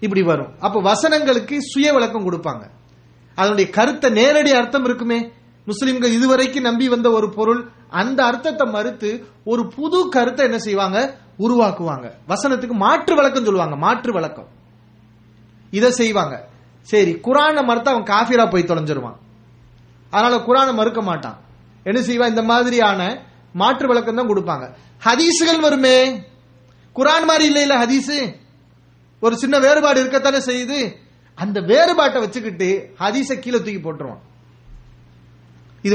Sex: male